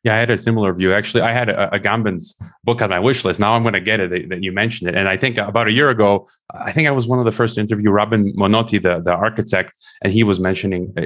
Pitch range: 105-135 Hz